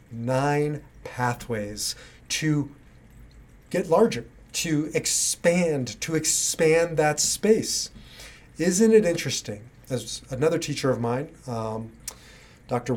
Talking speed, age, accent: 95 wpm, 30-49, American